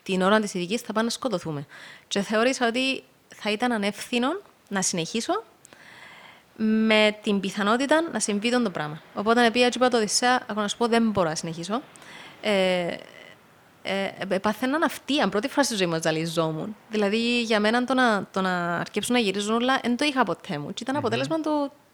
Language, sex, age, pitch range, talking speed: Greek, female, 30-49, 195-255 Hz, 185 wpm